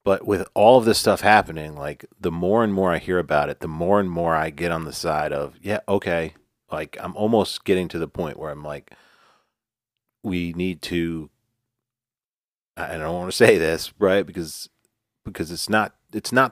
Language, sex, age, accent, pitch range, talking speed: English, male, 40-59, American, 80-110 Hz, 195 wpm